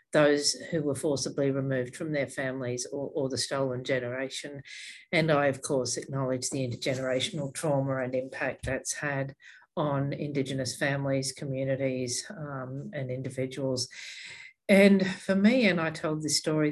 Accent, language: Australian, English